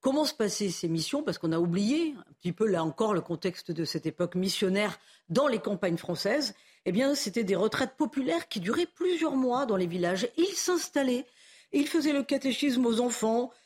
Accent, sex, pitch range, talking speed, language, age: French, female, 185-265 Hz, 200 wpm, French, 40-59